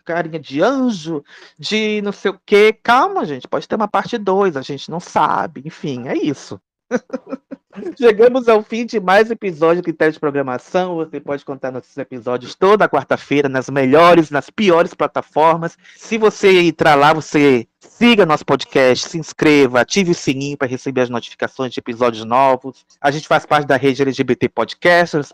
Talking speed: 170 wpm